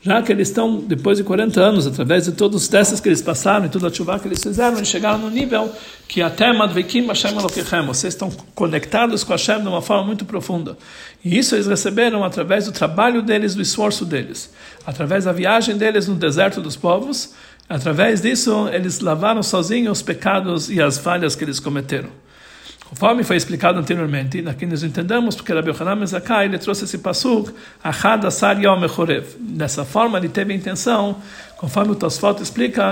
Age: 60-79